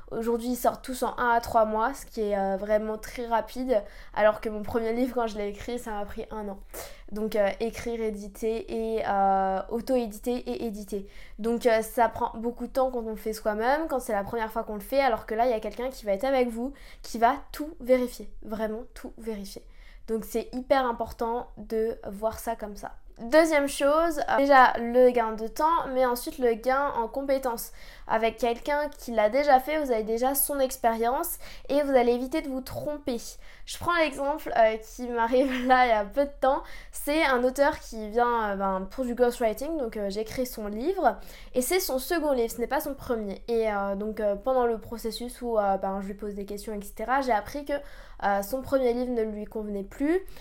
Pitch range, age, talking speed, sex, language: 220-265 Hz, 20-39, 220 wpm, female, French